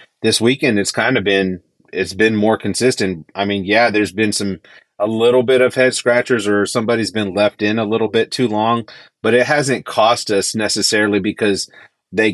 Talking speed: 195 wpm